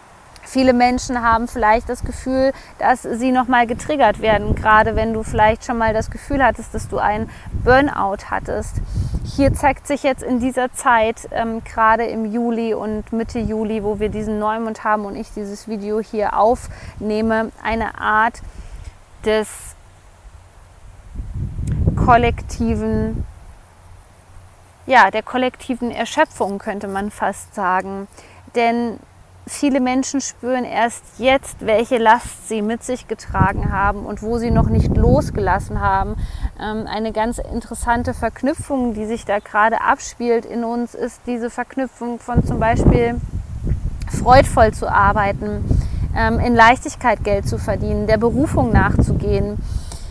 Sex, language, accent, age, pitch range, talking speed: female, German, German, 20-39, 205-240 Hz, 130 wpm